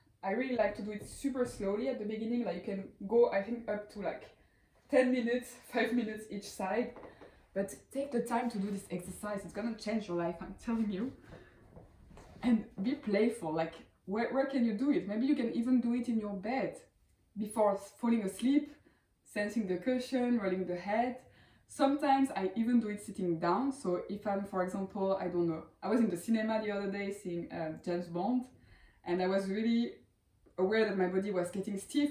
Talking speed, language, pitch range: 200 wpm, English, 190-240 Hz